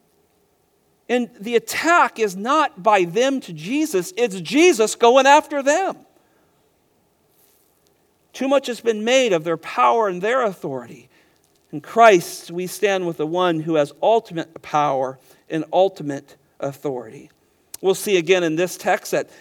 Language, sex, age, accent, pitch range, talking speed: English, male, 50-69, American, 150-235 Hz, 140 wpm